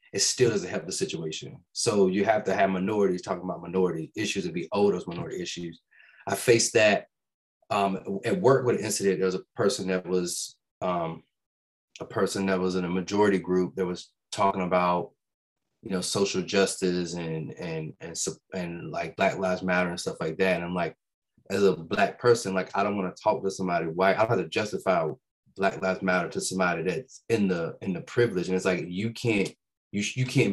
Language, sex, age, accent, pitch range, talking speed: English, male, 30-49, American, 90-115 Hz, 210 wpm